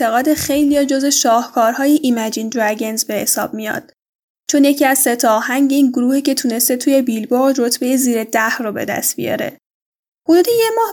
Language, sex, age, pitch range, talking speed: Persian, female, 10-29, 240-295 Hz, 170 wpm